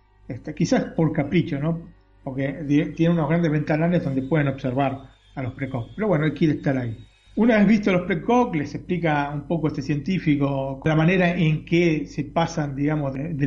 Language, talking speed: Spanish, 185 wpm